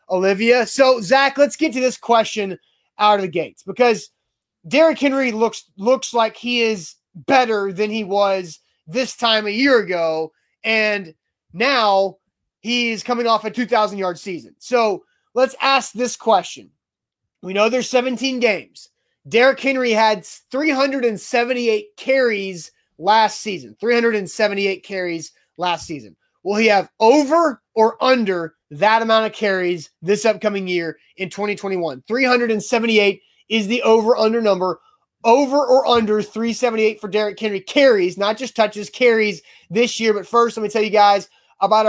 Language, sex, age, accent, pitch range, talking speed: English, male, 30-49, American, 200-240 Hz, 145 wpm